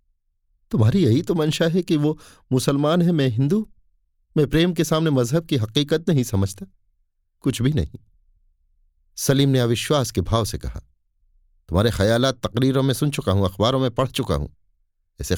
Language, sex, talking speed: Hindi, male, 170 wpm